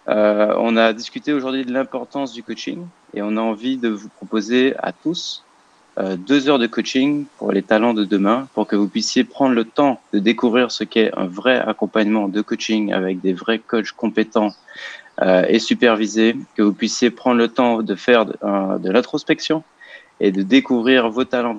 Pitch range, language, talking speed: 105-125 Hz, French, 185 wpm